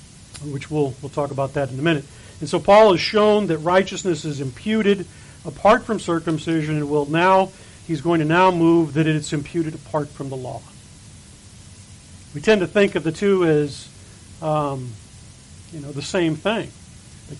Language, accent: English, American